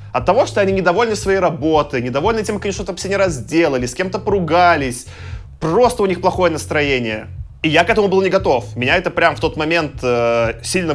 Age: 20-39